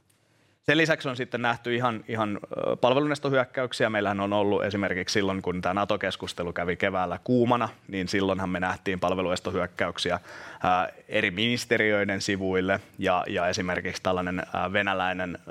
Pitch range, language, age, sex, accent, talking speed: 90-110 Hz, Finnish, 30-49, male, native, 125 wpm